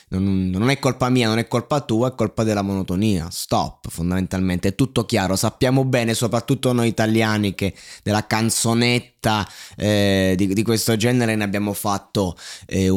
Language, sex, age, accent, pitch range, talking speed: Italian, male, 20-39, native, 95-115 Hz, 155 wpm